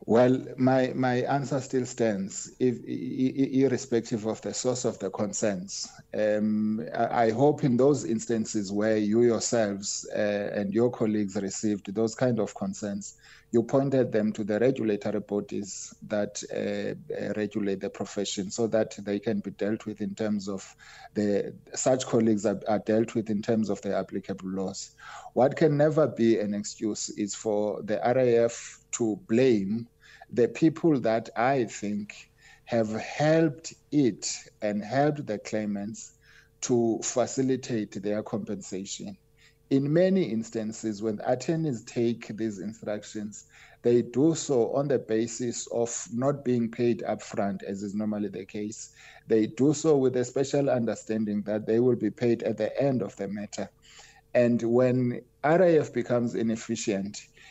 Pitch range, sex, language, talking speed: 105-125 Hz, male, English, 150 wpm